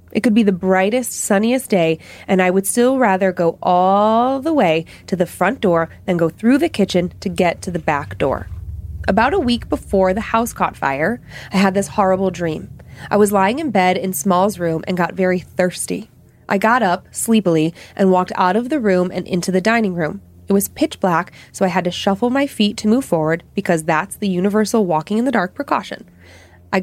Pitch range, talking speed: 175-215 Hz, 215 wpm